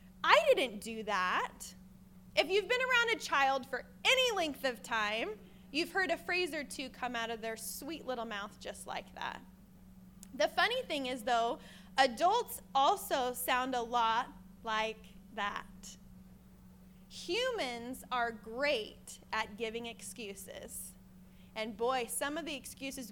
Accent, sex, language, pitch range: American, female, English, 200-280 Hz